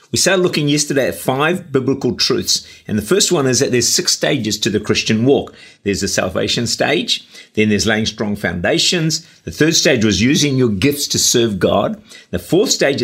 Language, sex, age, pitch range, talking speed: English, male, 50-69, 110-160 Hz, 200 wpm